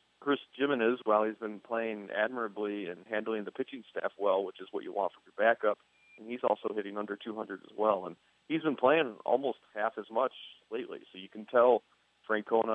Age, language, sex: 40-59, English, male